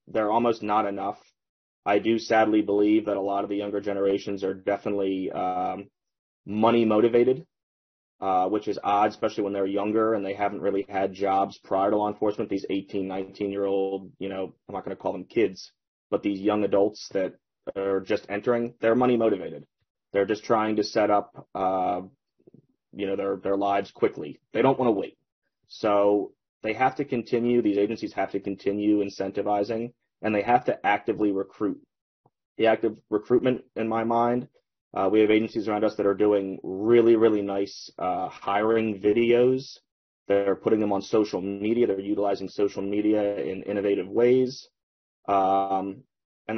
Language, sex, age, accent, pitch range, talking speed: English, male, 30-49, American, 100-115 Hz, 170 wpm